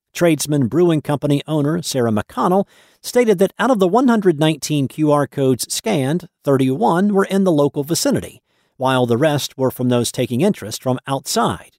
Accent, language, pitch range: American, English, 125-175 Hz